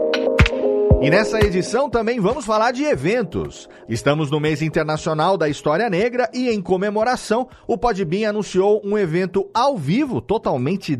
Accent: Brazilian